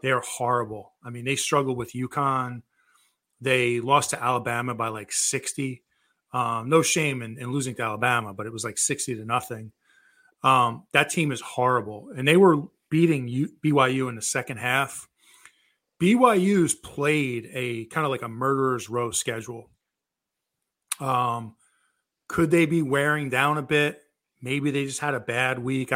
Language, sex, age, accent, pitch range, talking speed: English, male, 30-49, American, 125-150 Hz, 160 wpm